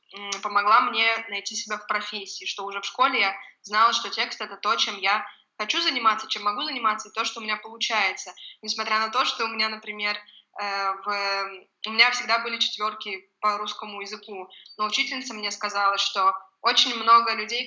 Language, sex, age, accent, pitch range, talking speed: Russian, female, 20-39, native, 210-235 Hz, 185 wpm